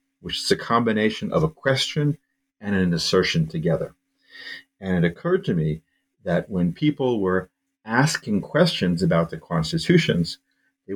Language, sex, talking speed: English, male, 140 wpm